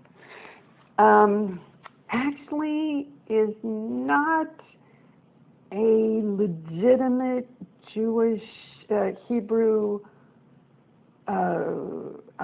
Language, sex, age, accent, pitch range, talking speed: English, female, 60-79, American, 180-225 Hz, 50 wpm